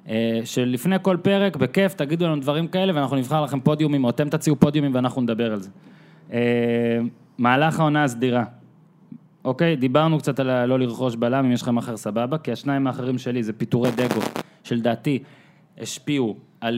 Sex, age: male, 20-39